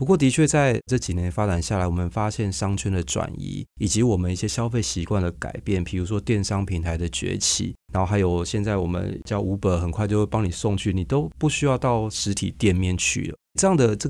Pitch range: 90-115 Hz